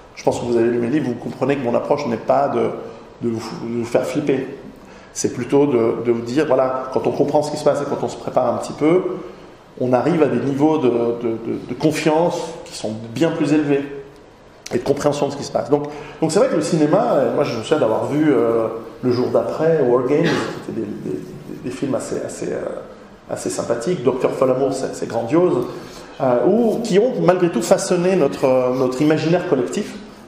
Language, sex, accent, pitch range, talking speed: French, male, French, 125-160 Hz, 230 wpm